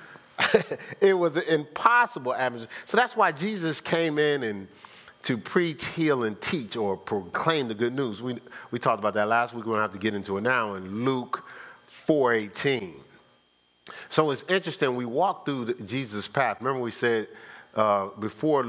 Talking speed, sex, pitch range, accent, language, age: 175 wpm, male, 105-145 Hz, American, English, 40-59